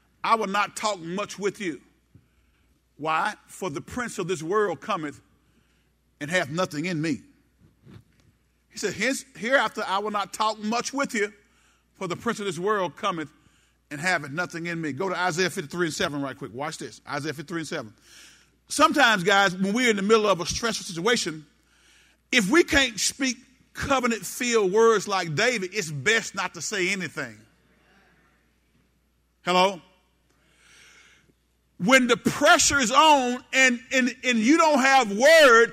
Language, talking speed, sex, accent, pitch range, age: English, 160 wpm, male, American, 185-255 Hz, 40-59